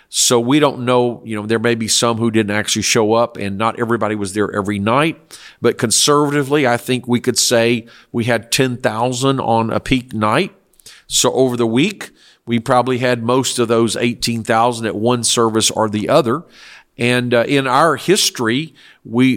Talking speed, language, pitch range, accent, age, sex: 185 wpm, English, 110-130 Hz, American, 50-69, male